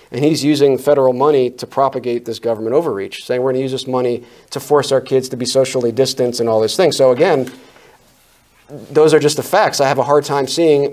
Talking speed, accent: 230 wpm, American